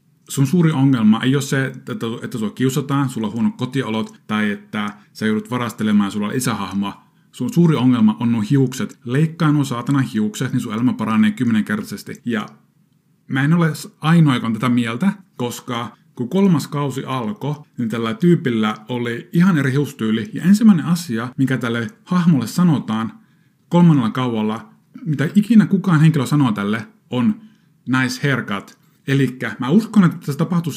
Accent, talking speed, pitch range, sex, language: native, 155 wpm, 115-160 Hz, male, Finnish